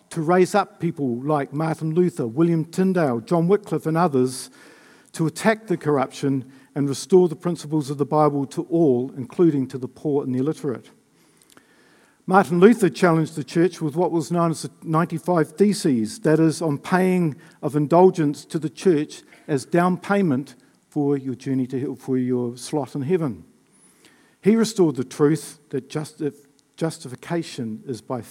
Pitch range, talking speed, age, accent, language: 140-180 Hz, 165 wpm, 50-69, Australian, English